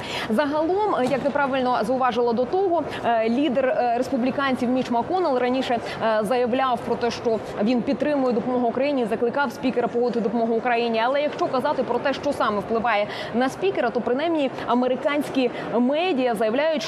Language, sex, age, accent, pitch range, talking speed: Ukrainian, female, 20-39, native, 225-280 Hz, 140 wpm